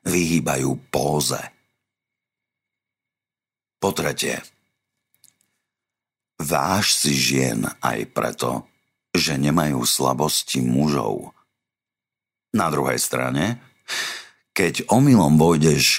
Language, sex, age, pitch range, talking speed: Slovak, male, 50-69, 75-115 Hz, 70 wpm